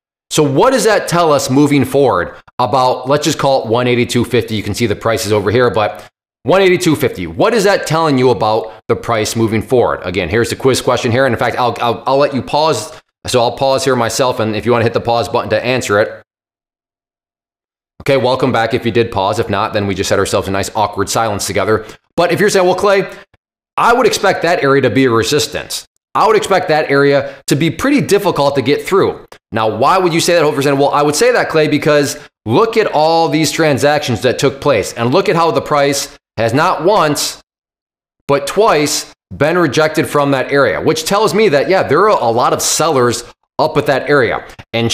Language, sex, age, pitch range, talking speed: English, male, 20-39, 120-155 Hz, 220 wpm